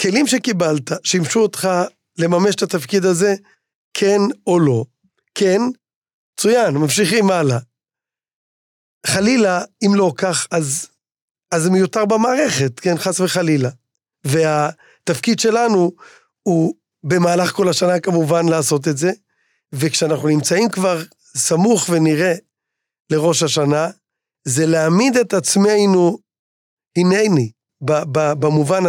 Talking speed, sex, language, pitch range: 105 wpm, male, Hebrew, 155-190 Hz